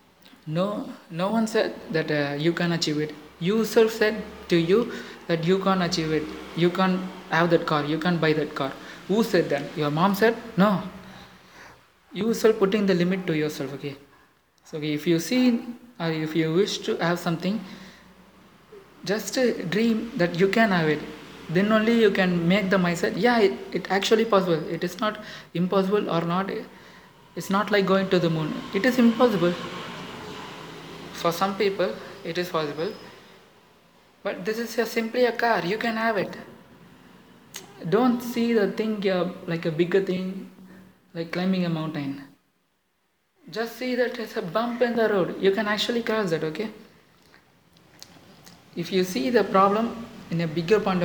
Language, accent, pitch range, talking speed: Tamil, native, 175-215 Hz, 170 wpm